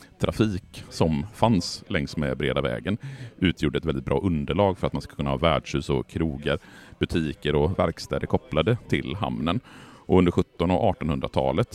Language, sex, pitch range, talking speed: Swedish, male, 70-105 Hz, 170 wpm